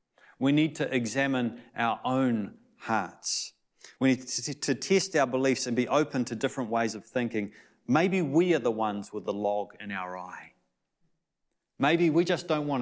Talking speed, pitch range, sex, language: 180 wpm, 105-135 Hz, male, English